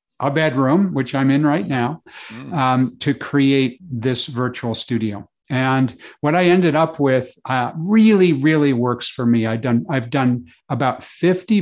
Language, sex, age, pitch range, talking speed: English, male, 50-69, 120-150 Hz, 150 wpm